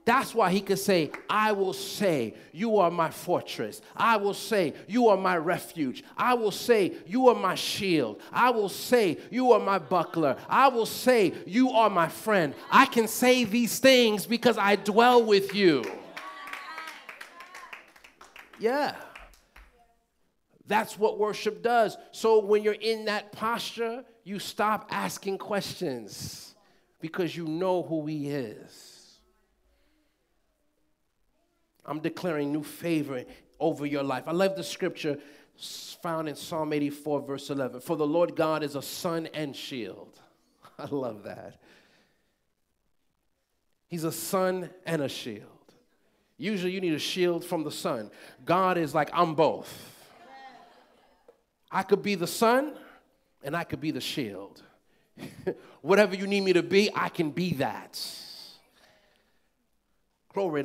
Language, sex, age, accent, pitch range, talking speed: English, male, 40-59, American, 160-220 Hz, 140 wpm